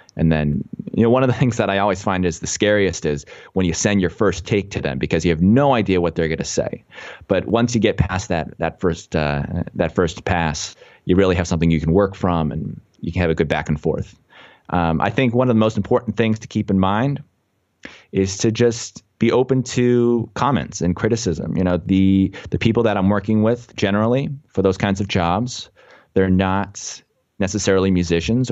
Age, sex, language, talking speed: 30-49, male, English, 220 wpm